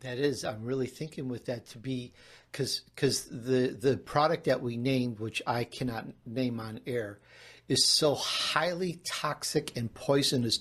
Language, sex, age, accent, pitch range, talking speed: English, male, 60-79, American, 125-145 Hz, 155 wpm